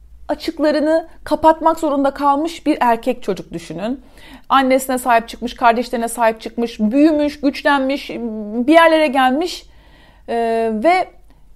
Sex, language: female, Turkish